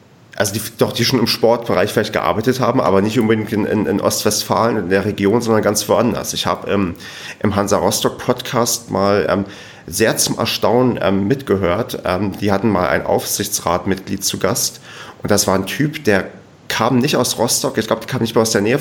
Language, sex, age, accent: German, male, 30-49, German